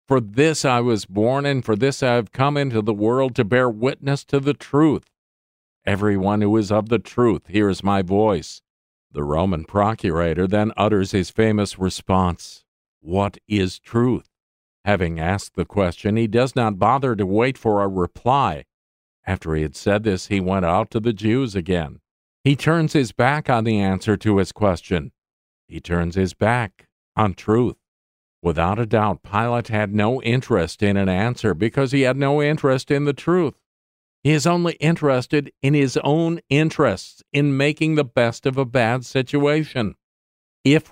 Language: English